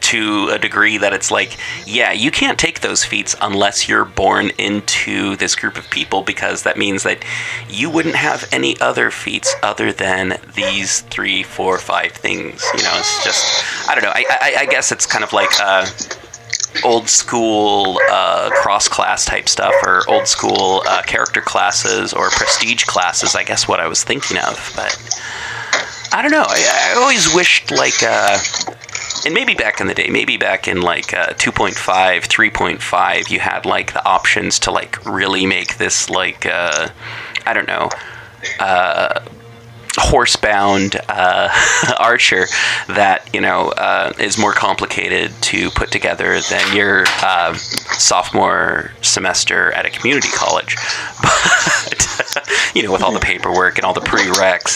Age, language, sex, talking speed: 30-49, English, male, 160 wpm